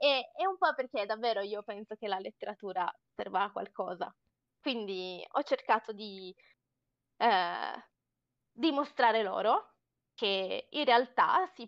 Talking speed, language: 125 wpm, Italian